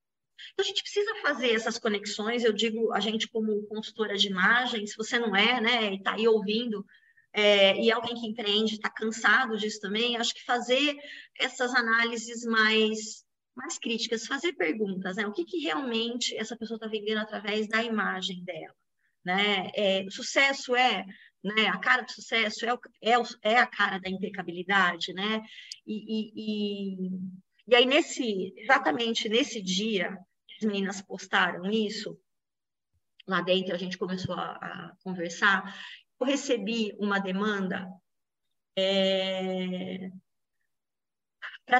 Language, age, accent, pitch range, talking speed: Portuguese, 20-39, Brazilian, 195-235 Hz, 145 wpm